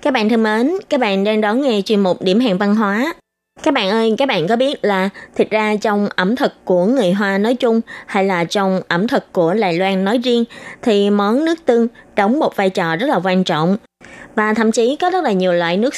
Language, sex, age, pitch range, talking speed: Vietnamese, female, 20-39, 185-255 Hz, 240 wpm